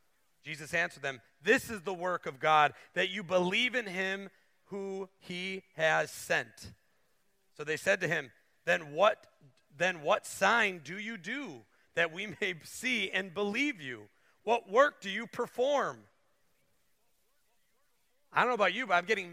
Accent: American